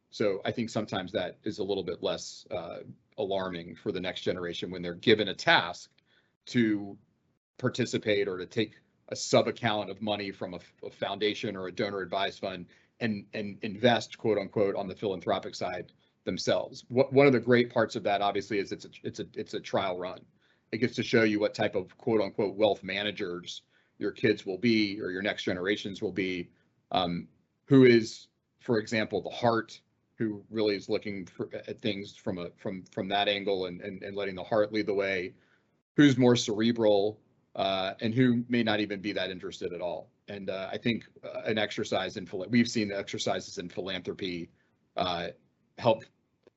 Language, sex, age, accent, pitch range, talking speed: English, male, 40-59, American, 95-115 Hz, 190 wpm